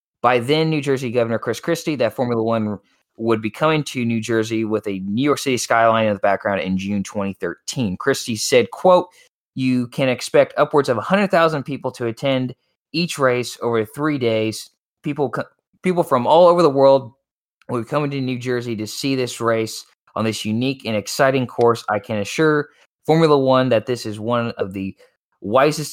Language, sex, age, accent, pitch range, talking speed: English, male, 20-39, American, 110-145 Hz, 185 wpm